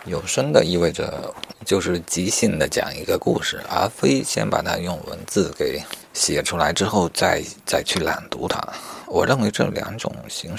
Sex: male